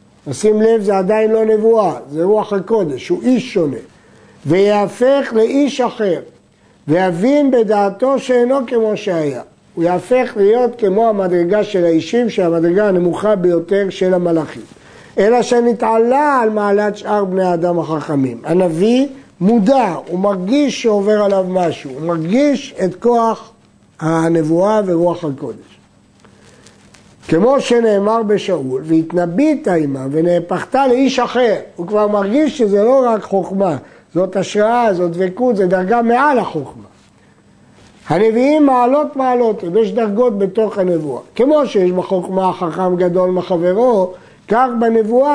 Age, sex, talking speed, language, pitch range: 50-69, male, 120 wpm, Hebrew, 180-235 Hz